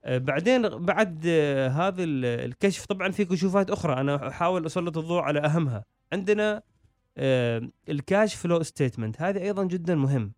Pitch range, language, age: 130-170 Hz, Arabic, 30-49